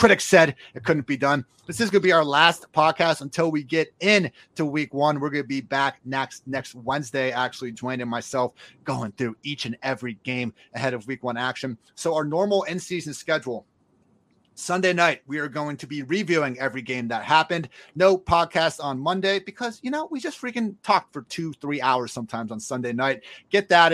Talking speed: 200 wpm